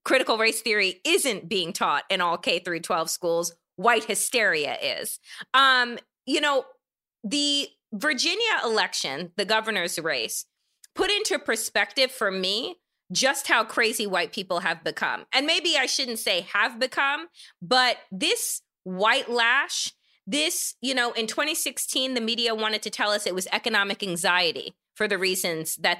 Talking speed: 150 wpm